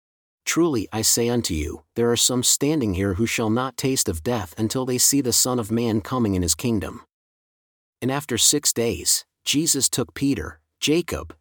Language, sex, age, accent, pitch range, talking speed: English, male, 40-59, American, 100-130 Hz, 185 wpm